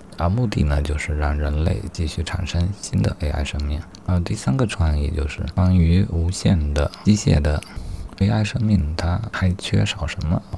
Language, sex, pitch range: Chinese, male, 80-95 Hz